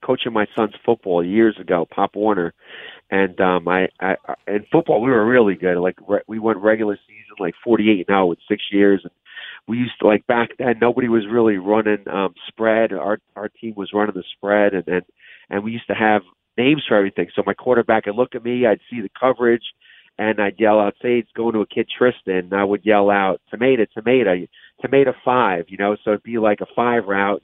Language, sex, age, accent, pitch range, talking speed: English, male, 40-59, American, 100-120 Hz, 215 wpm